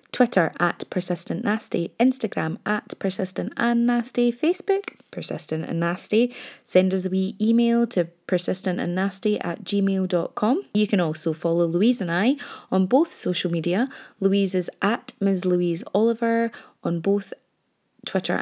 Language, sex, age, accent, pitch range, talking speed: English, female, 20-39, British, 175-215 Hz, 135 wpm